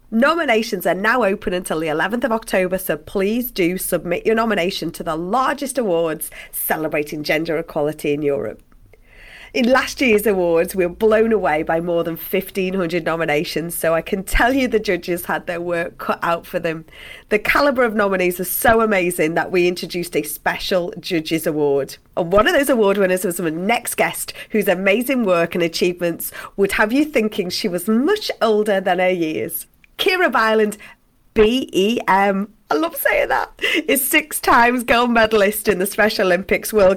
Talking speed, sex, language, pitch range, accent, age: 175 wpm, female, English, 180-230 Hz, British, 30-49